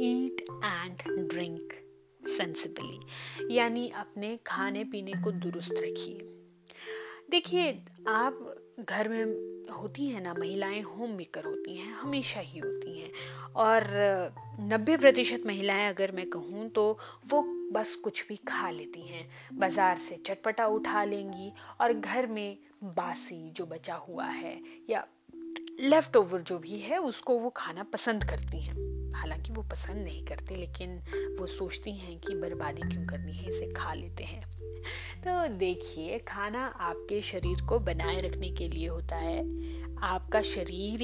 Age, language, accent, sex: 30-49, Hindi, native, female